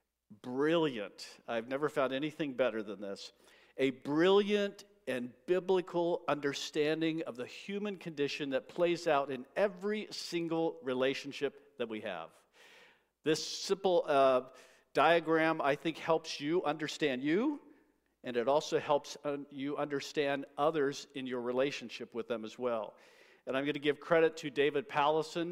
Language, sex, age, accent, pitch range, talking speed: English, male, 50-69, American, 135-170 Hz, 140 wpm